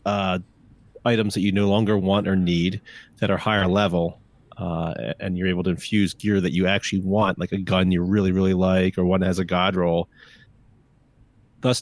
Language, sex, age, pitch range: English, male, 30-49, 95-120 Hz